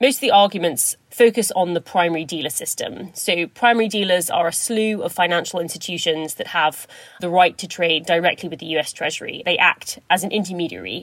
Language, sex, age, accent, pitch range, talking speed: English, female, 30-49, British, 165-205 Hz, 190 wpm